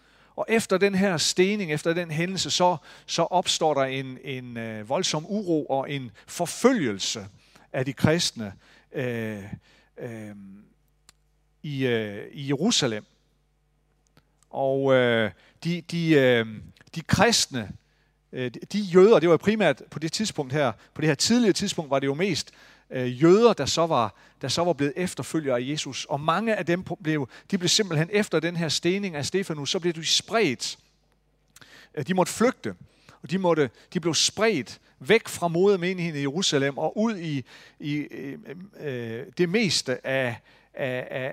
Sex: male